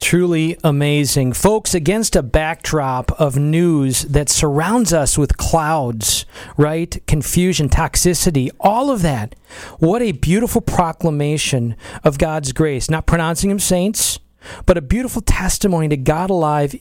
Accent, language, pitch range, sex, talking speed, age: American, English, 145-190 Hz, male, 130 wpm, 40-59